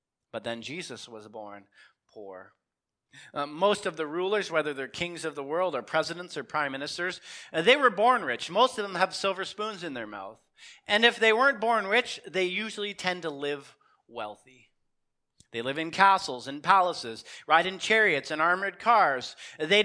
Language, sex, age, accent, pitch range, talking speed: English, male, 40-59, American, 135-195 Hz, 185 wpm